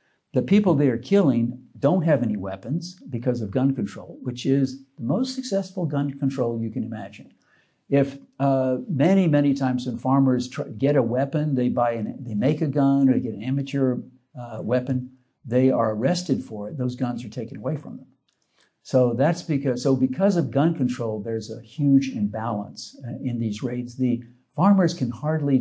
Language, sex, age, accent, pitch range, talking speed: English, male, 60-79, American, 120-145 Hz, 185 wpm